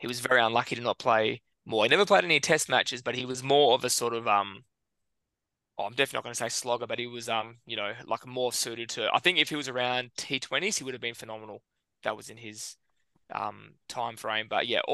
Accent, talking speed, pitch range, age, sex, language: Australian, 250 wpm, 115-130 Hz, 20-39, male, English